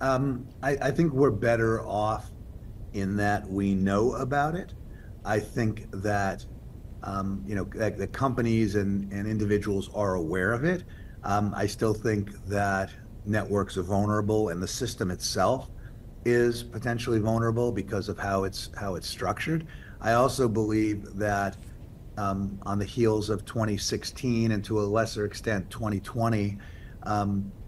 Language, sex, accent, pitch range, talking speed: English, male, American, 100-115 Hz, 145 wpm